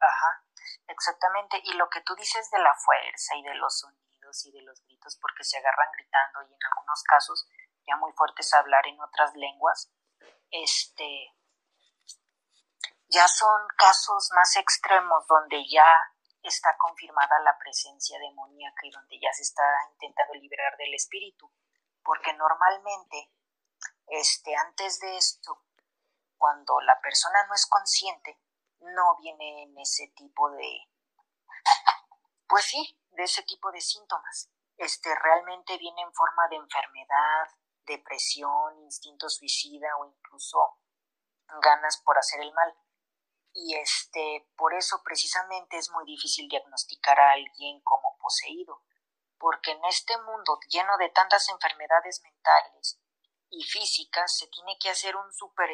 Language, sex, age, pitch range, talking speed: Spanish, female, 30-49, 150-205 Hz, 140 wpm